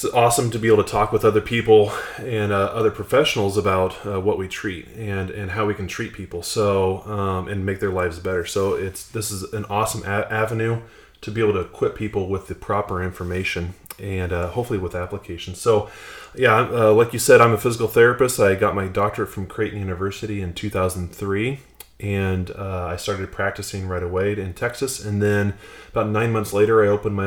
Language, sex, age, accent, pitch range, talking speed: English, male, 20-39, American, 95-110 Hz, 200 wpm